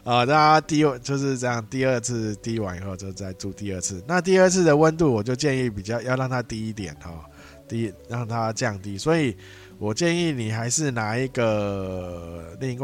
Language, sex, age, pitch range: Chinese, male, 20-39, 95-125 Hz